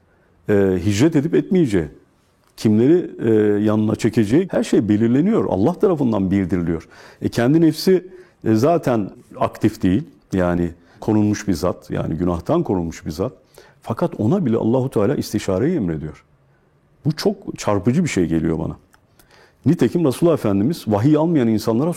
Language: Turkish